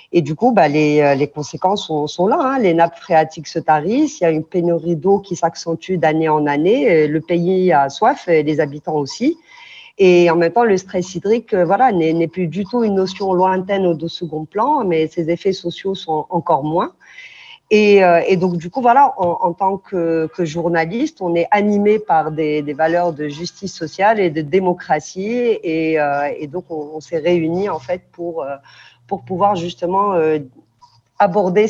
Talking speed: 195 wpm